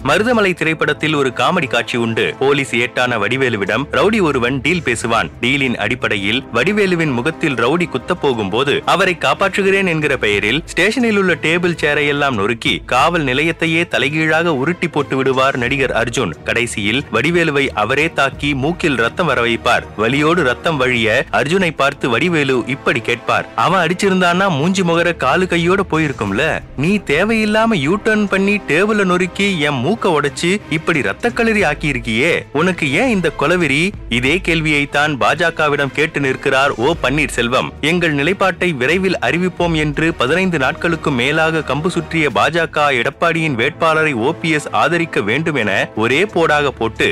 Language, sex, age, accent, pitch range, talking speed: Tamil, male, 30-49, native, 135-175 Hz, 125 wpm